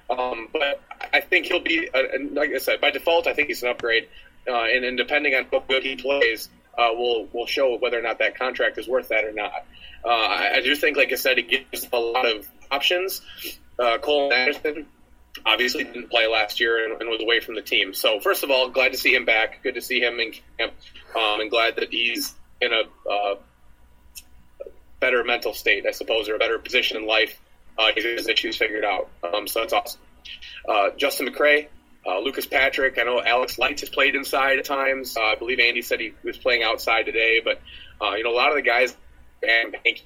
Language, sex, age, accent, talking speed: English, male, 30-49, American, 220 wpm